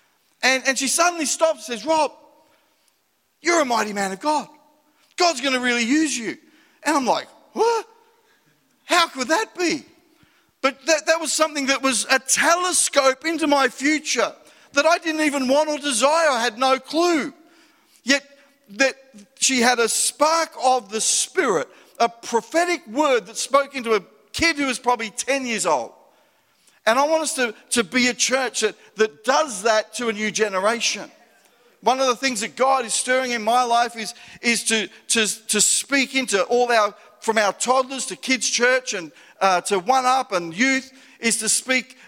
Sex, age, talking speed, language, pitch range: male, 50-69, 180 wpm, English, 225-295 Hz